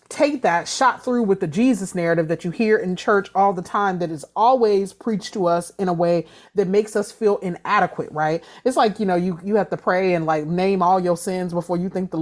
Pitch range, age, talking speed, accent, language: 185-250 Hz, 30-49, 245 wpm, American, English